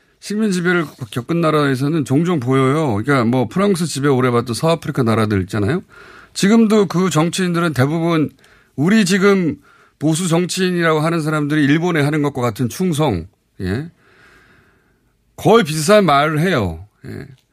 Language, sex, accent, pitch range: Korean, male, native, 120-170 Hz